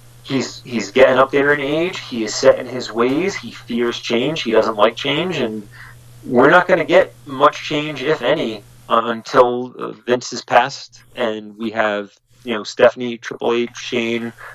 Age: 30-49